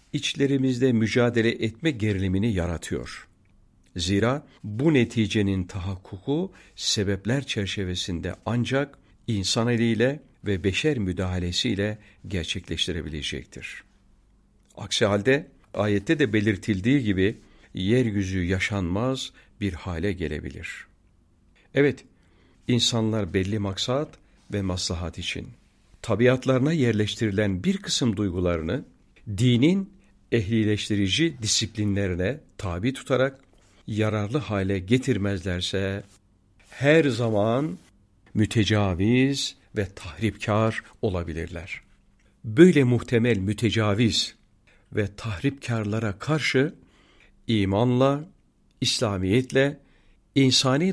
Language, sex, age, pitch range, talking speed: Turkish, male, 50-69, 95-130 Hz, 75 wpm